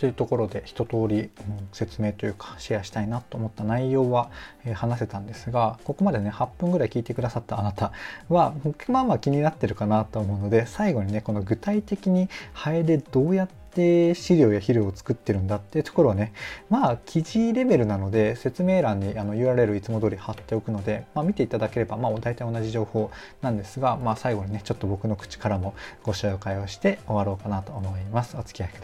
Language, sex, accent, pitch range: Japanese, male, native, 105-145 Hz